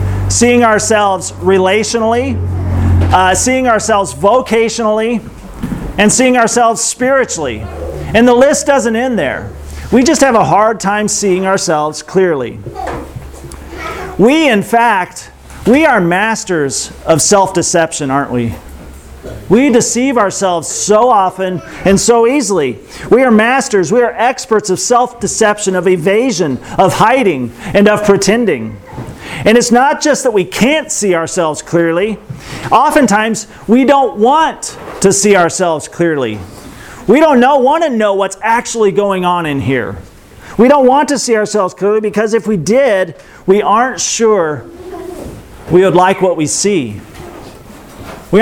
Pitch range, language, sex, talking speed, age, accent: 180-235 Hz, English, male, 135 wpm, 40-59, American